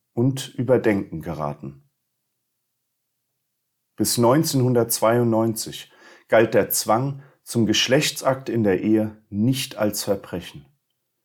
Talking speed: 85 wpm